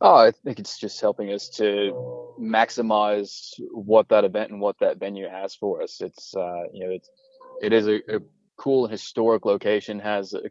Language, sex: English, male